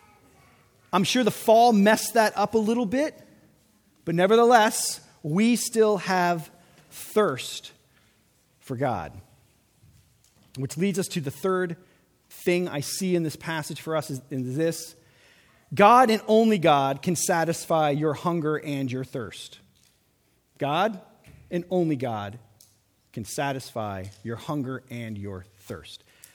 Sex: male